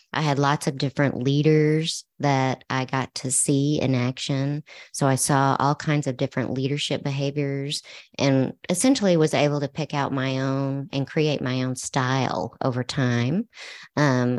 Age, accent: 30-49, American